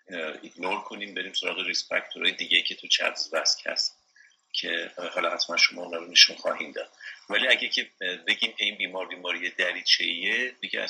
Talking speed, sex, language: 175 wpm, male, Persian